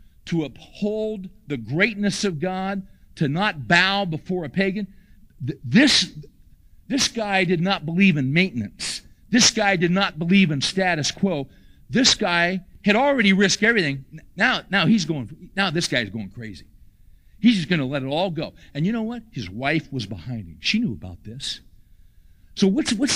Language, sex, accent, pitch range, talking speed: English, male, American, 130-195 Hz, 175 wpm